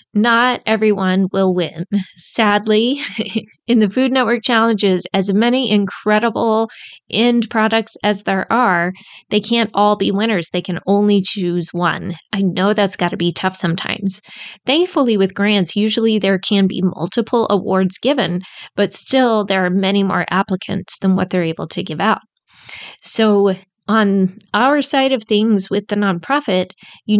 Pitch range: 190-225 Hz